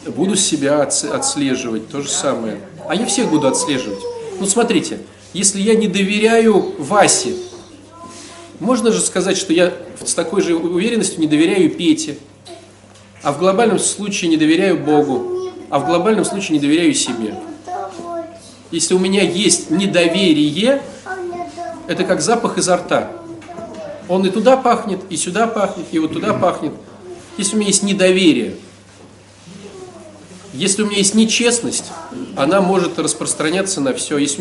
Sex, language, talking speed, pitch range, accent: male, Russian, 145 wpm, 175-255 Hz, native